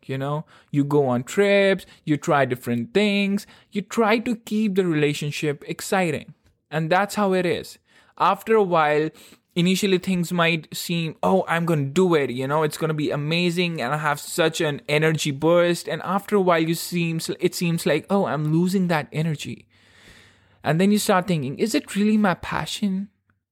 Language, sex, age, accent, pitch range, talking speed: English, male, 20-39, Indian, 145-195 Hz, 185 wpm